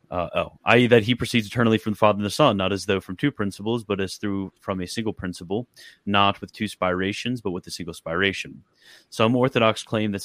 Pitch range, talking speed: 90-110 Hz, 230 wpm